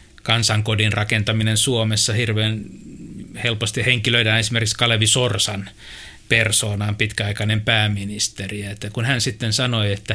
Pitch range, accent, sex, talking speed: 105-120 Hz, native, male, 100 wpm